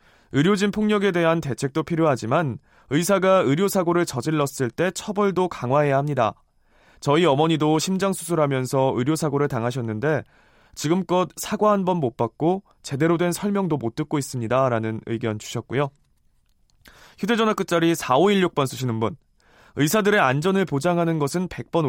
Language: Korean